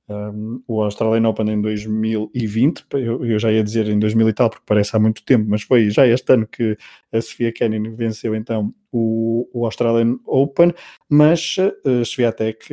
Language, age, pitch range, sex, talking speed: Portuguese, 20-39, 110-125 Hz, male, 185 wpm